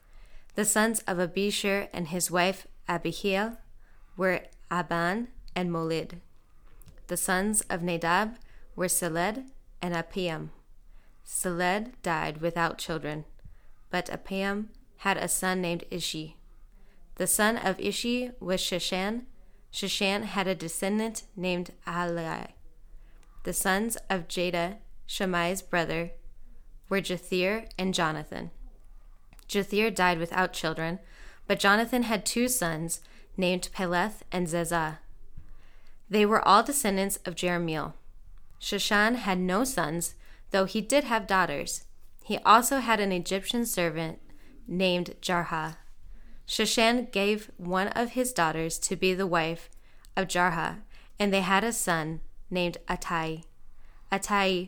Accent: American